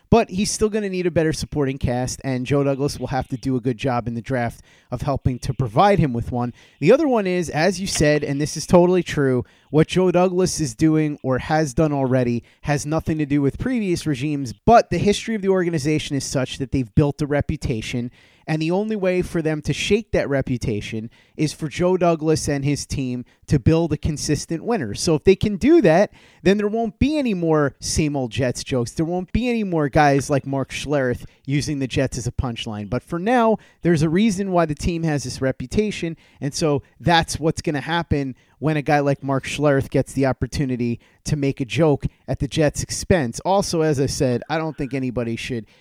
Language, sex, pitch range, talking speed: English, male, 130-165 Hz, 220 wpm